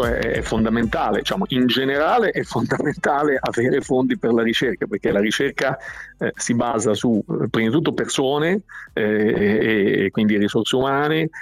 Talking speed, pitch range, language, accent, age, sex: 145 wpm, 110-130 Hz, Italian, native, 50-69, male